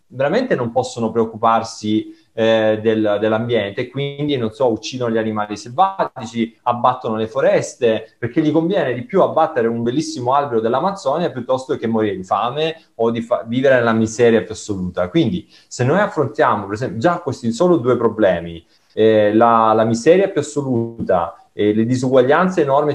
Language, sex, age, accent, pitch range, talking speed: Italian, male, 30-49, native, 110-150 Hz, 160 wpm